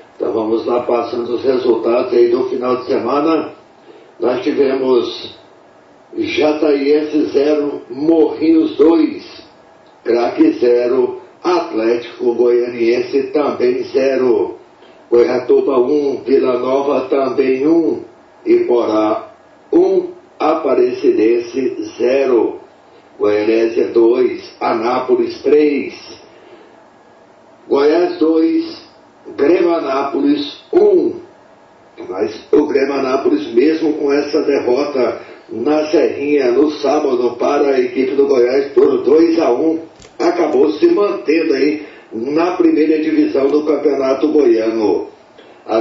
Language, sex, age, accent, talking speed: Portuguese, male, 60-79, Brazilian, 100 wpm